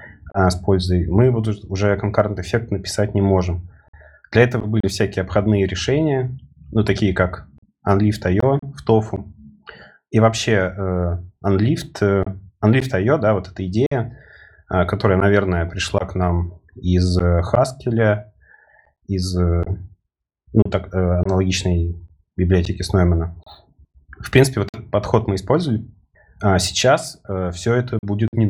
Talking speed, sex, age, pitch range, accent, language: 120 wpm, male, 30-49, 90-110 Hz, native, Russian